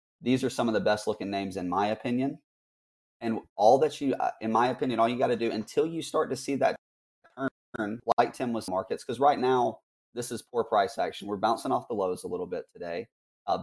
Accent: American